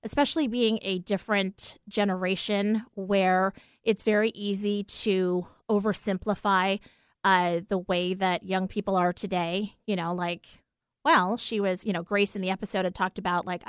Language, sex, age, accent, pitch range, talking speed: English, female, 30-49, American, 180-220 Hz, 155 wpm